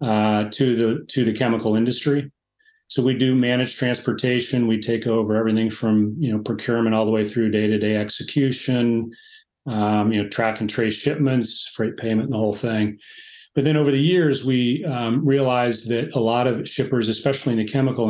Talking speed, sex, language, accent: 185 wpm, male, English, American